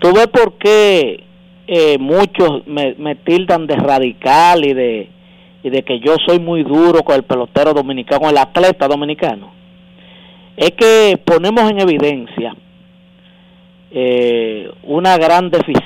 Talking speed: 135 wpm